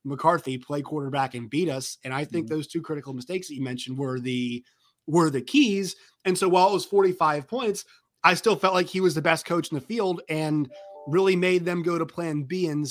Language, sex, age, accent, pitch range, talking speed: English, male, 30-49, American, 130-170 Hz, 230 wpm